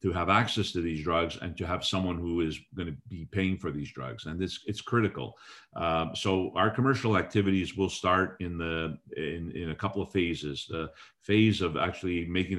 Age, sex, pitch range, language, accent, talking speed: 50-69, male, 85-95 Hz, English, American, 195 wpm